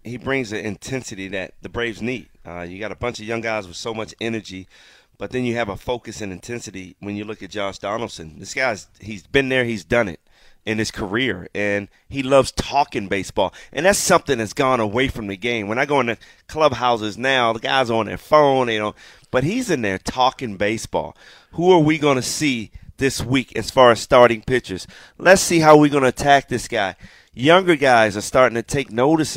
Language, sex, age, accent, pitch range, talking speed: English, male, 30-49, American, 110-135 Hz, 220 wpm